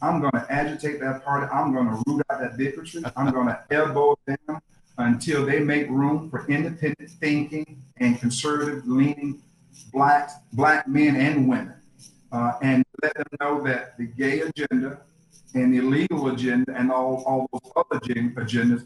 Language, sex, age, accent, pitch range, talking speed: English, male, 40-59, American, 130-155 Hz, 165 wpm